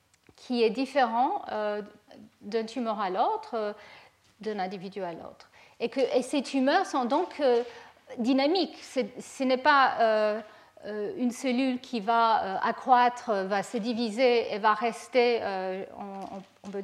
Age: 50-69